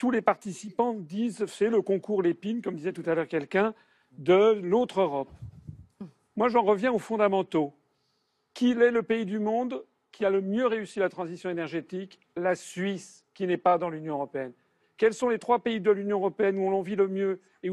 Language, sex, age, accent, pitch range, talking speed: French, male, 50-69, French, 180-220 Hz, 195 wpm